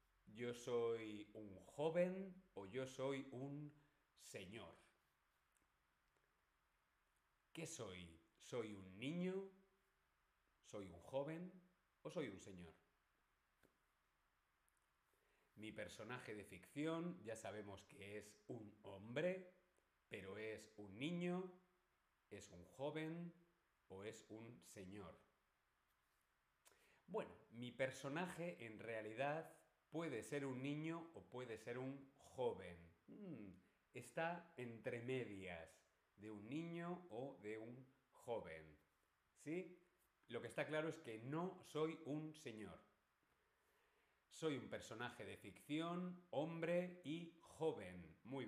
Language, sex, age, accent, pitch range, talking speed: Spanish, male, 40-59, Spanish, 105-165 Hz, 105 wpm